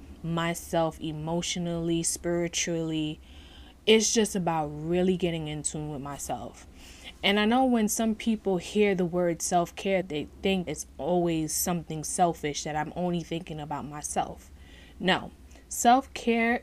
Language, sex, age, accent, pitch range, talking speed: English, female, 20-39, American, 160-200 Hz, 130 wpm